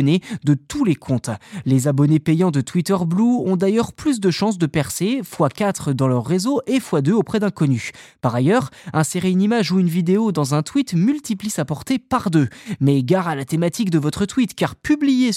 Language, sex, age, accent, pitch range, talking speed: French, male, 20-39, French, 150-210 Hz, 200 wpm